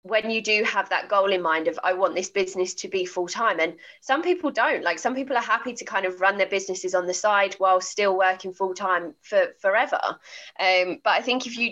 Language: English